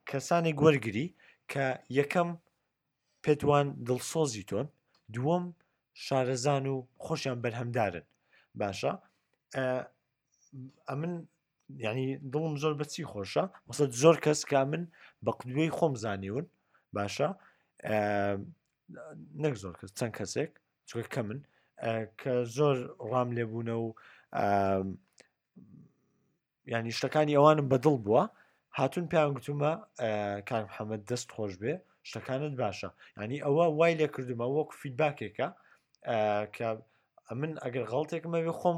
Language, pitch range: Arabic, 115-155 Hz